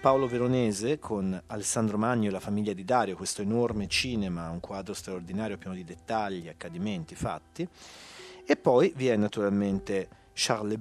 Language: Italian